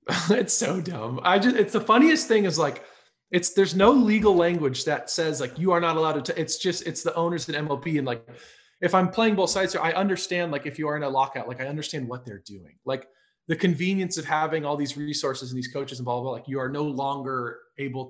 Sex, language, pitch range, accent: male, English, 135-180 Hz, American